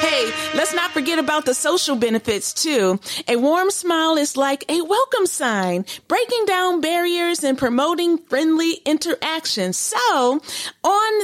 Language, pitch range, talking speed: English, 290-370 Hz, 140 wpm